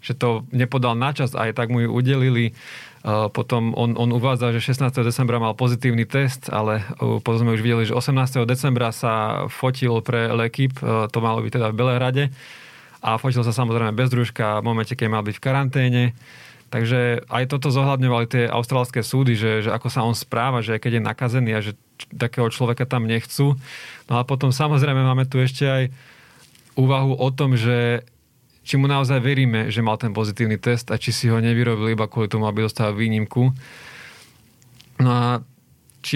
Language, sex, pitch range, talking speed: Slovak, male, 115-130 Hz, 180 wpm